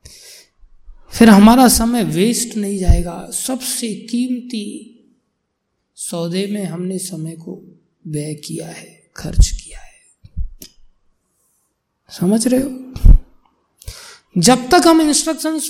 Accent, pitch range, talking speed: native, 170-245 Hz, 100 wpm